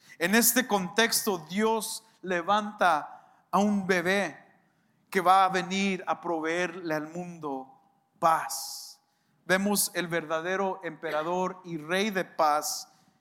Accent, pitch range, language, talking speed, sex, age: Mexican, 155-200 Hz, English, 115 wpm, male, 50-69